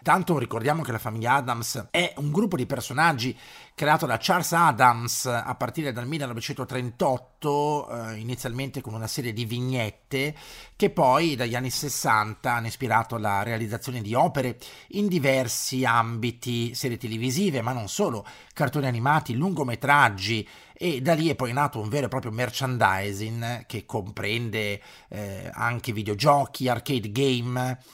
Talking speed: 140 wpm